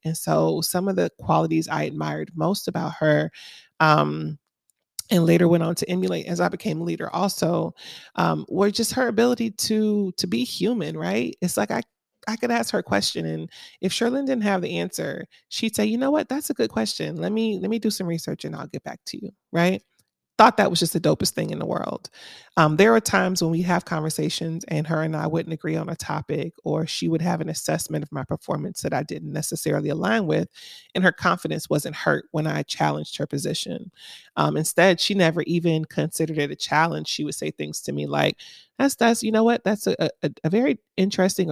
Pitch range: 160-210 Hz